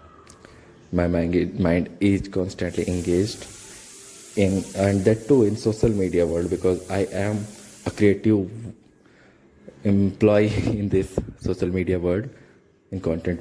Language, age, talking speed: Hindi, 20-39, 115 wpm